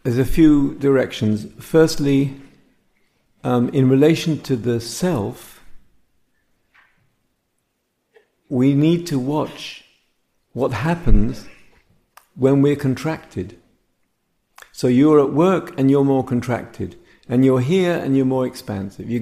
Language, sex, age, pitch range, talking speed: English, male, 50-69, 115-140 Hz, 110 wpm